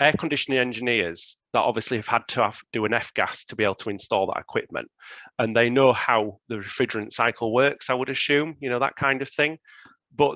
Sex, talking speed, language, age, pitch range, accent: male, 225 wpm, English, 30-49, 105-135 Hz, British